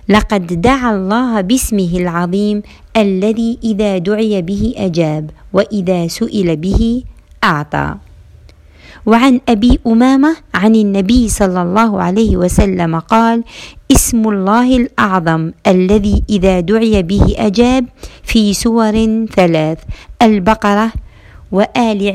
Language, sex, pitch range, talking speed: Arabic, female, 180-230 Hz, 100 wpm